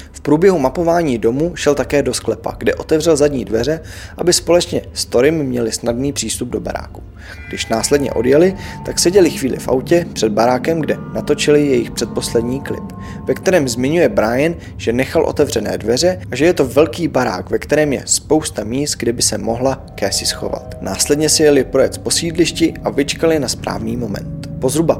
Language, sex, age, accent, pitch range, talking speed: Czech, male, 20-39, native, 115-150 Hz, 180 wpm